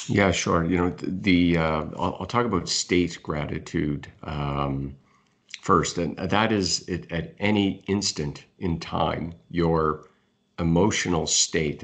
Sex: male